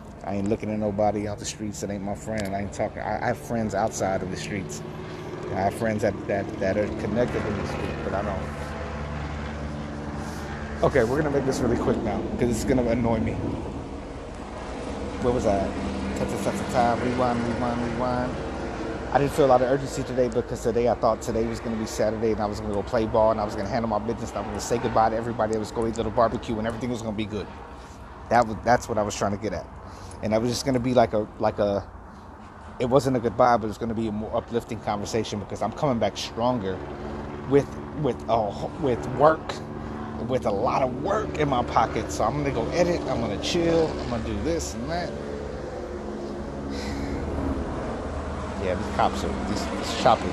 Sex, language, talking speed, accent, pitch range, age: male, English, 225 wpm, American, 75-115 Hz, 30-49